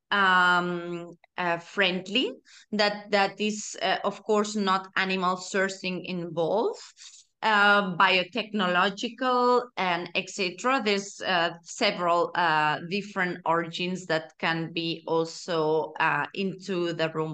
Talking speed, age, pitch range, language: 105 wpm, 20-39, 185-225 Hz, English